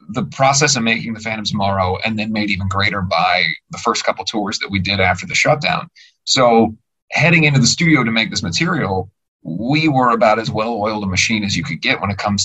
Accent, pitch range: American, 100-130 Hz